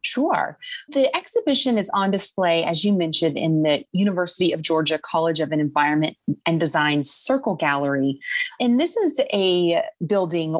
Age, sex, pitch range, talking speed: 30-49, female, 155-195 Hz, 145 wpm